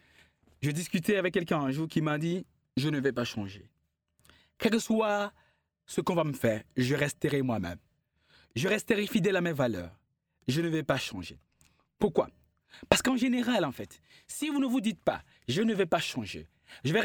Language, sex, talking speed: English, male, 195 wpm